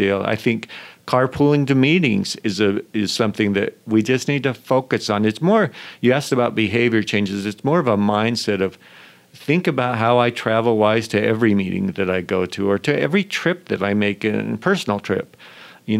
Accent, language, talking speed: American, English, 200 wpm